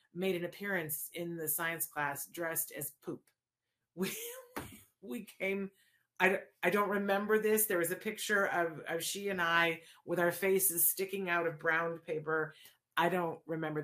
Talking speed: 165 wpm